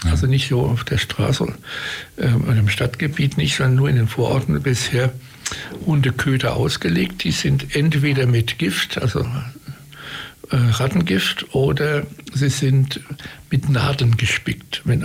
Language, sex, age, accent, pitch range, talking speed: German, male, 60-79, German, 120-140 Hz, 135 wpm